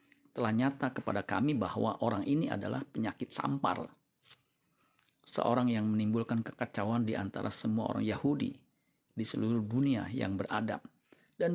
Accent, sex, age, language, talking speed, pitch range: native, male, 40-59, Indonesian, 130 wpm, 105-125 Hz